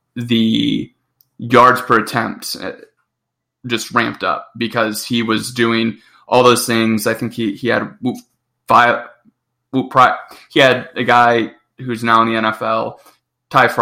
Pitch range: 110-125 Hz